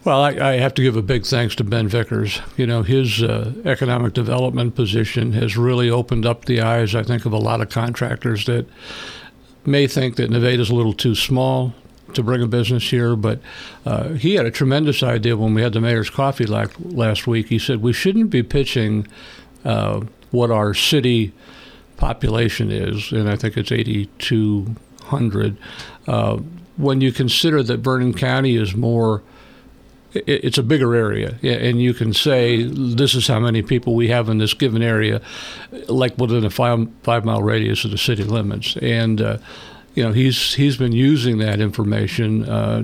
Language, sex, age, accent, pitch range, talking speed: English, male, 60-79, American, 110-125 Hz, 180 wpm